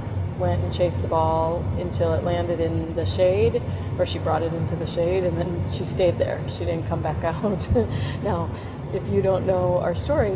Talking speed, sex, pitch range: 205 wpm, female, 85-110 Hz